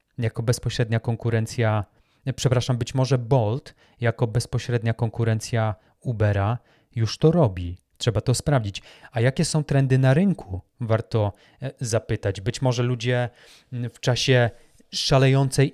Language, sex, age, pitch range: Polish, male, 30-49, 115-135 Hz